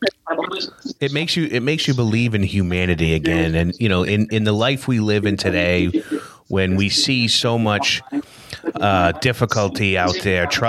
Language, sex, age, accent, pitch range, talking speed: English, male, 30-49, American, 90-110 Hz, 170 wpm